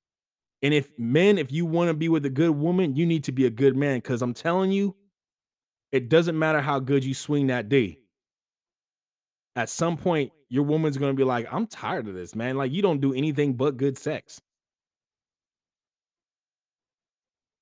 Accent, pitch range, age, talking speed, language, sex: American, 105-135 Hz, 20-39, 185 wpm, English, male